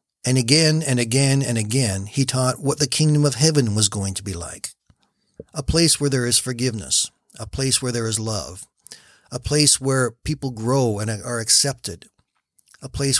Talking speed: 180 wpm